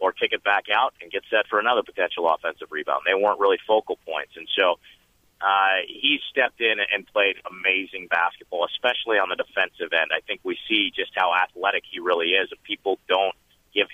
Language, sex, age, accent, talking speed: English, male, 40-59, American, 200 wpm